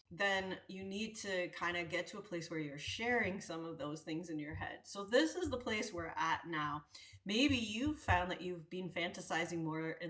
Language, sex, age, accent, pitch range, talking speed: English, female, 30-49, American, 160-205 Hz, 220 wpm